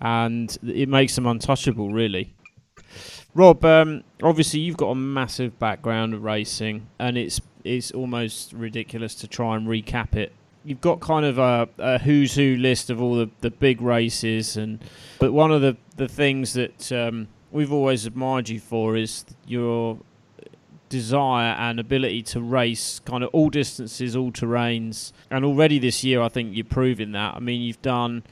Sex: male